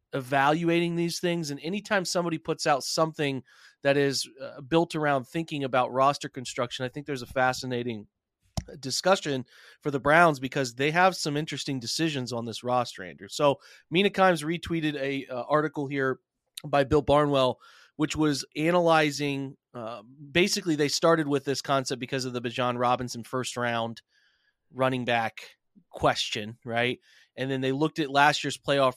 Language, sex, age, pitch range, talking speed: English, male, 30-49, 120-150 Hz, 160 wpm